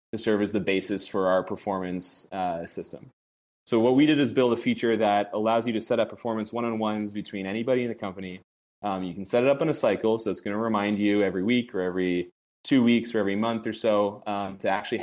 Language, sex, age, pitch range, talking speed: English, male, 20-39, 95-110 Hz, 235 wpm